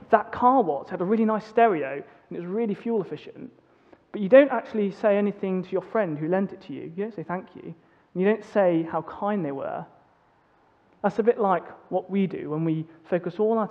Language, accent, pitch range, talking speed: English, British, 165-215 Hz, 230 wpm